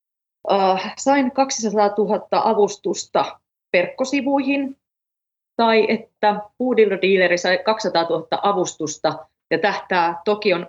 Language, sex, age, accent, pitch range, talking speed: Finnish, female, 30-49, native, 170-220 Hz, 85 wpm